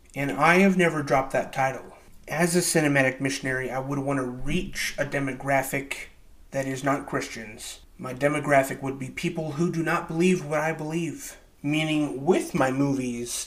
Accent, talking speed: American, 170 wpm